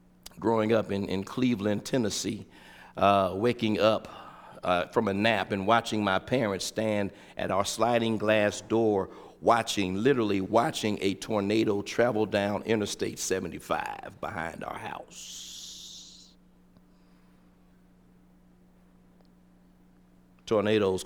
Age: 50-69